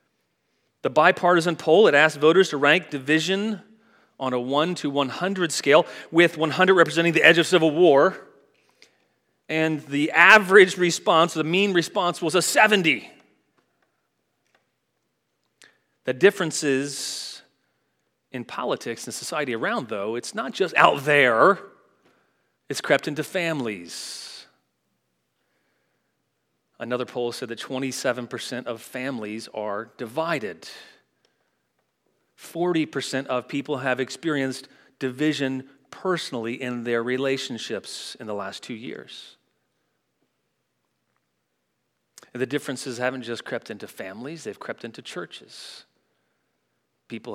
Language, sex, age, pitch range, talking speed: English, male, 30-49, 130-180 Hz, 110 wpm